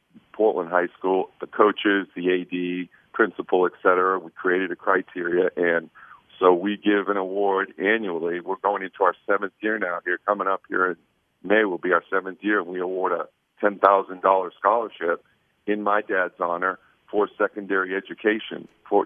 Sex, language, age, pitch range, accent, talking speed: male, English, 50-69, 90-100 Hz, American, 160 wpm